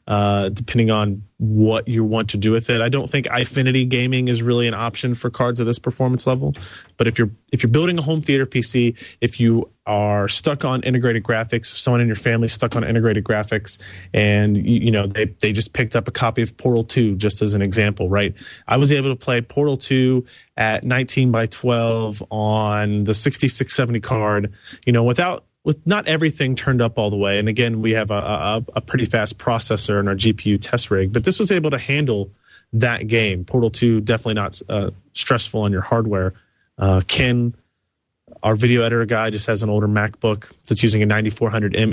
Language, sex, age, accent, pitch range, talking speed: English, male, 30-49, American, 105-125 Hz, 200 wpm